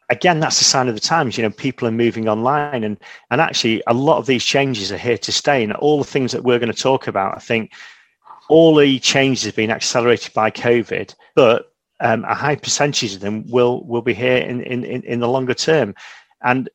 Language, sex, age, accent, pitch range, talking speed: English, male, 40-59, British, 110-135 Hz, 225 wpm